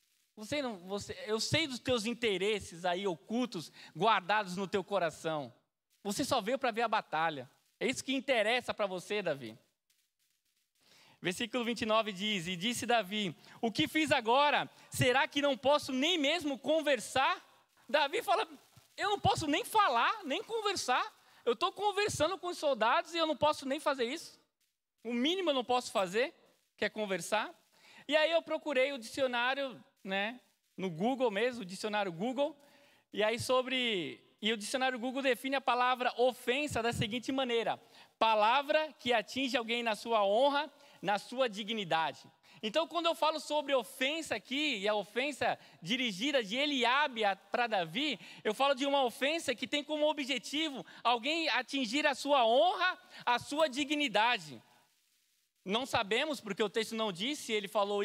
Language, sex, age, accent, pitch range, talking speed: Portuguese, male, 20-39, Brazilian, 215-290 Hz, 155 wpm